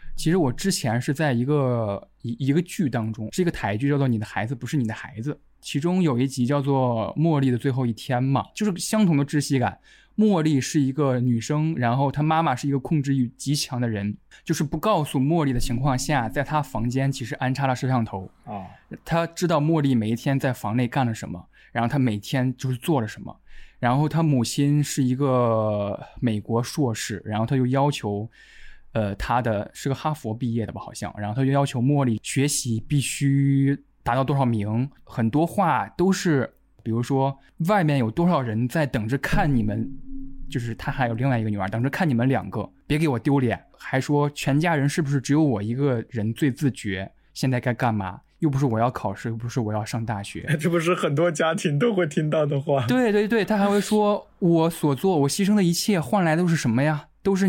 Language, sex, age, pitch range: Chinese, male, 20-39, 120-155 Hz